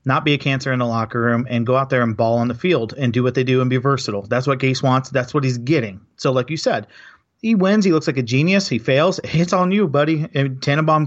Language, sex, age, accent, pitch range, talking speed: English, male, 30-49, American, 120-145 Hz, 280 wpm